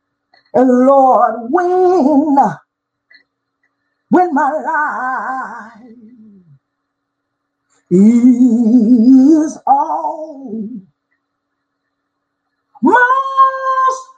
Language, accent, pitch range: English, American, 255-380 Hz